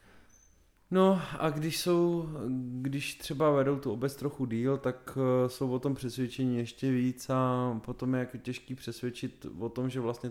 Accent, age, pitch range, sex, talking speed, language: native, 20-39, 110-130 Hz, male, 165 wpm, Czech